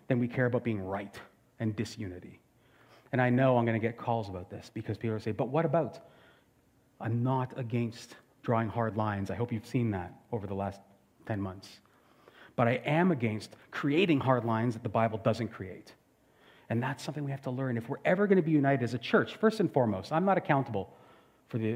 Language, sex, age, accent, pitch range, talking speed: English, male, 40-59, American, 110-145 Hz, 210 wpm